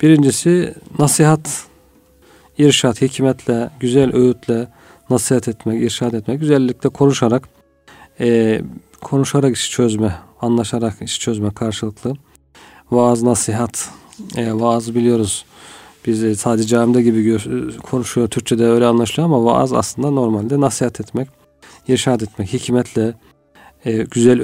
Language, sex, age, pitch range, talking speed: Turkish, male, 40-59, 110-130 Hz, 115 wpm